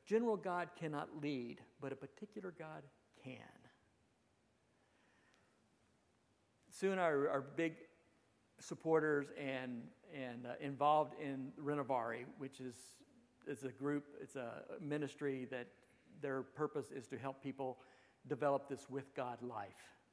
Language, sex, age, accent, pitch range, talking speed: English, male, 50-69, American, 125-160 Hz, 120 wpm